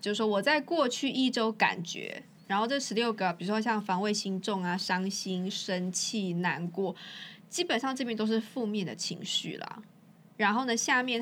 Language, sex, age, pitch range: Chinese, female, 20-39, 185-225 Hz